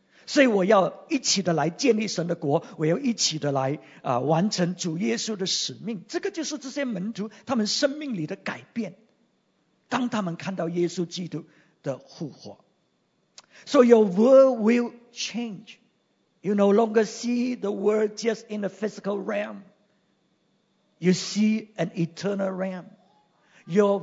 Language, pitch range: English, 170-240 Hz